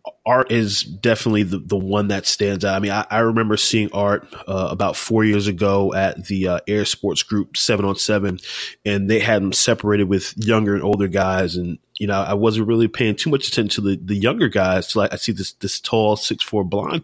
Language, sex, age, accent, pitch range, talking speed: English, male, 20-39, American, 95-110 Hz, 230 wpm